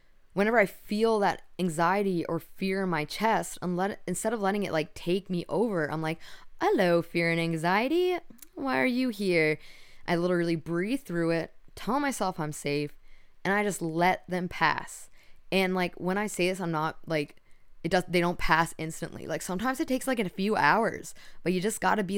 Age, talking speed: 10-29, 200 wpm